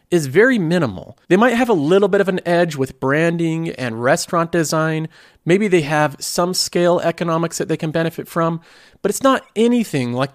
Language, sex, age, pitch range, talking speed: English, male, 40-59, 145-200 Hz, 190 wpm